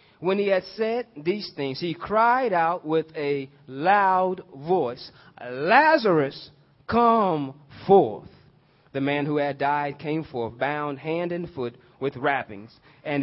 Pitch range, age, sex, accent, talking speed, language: 145-190 Hz, 30-49, male, American, 135 wpm, English